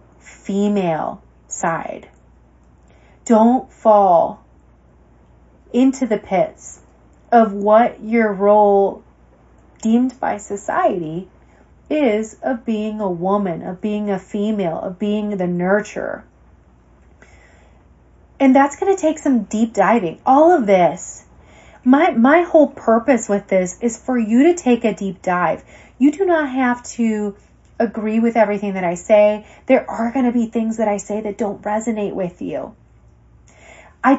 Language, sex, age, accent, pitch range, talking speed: English, female, 30-49, American, 190-275 Hz, 135 wpm